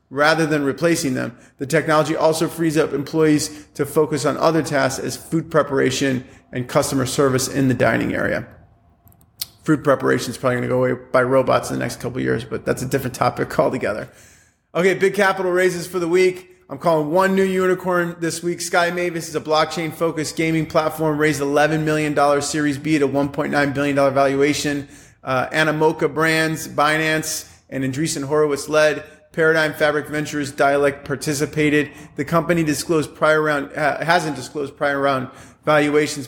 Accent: American